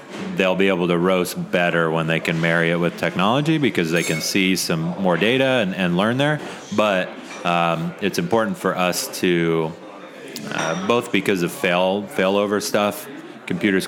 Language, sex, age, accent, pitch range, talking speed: English, male, 30-49, American, 85-95 Hz, 170 wpm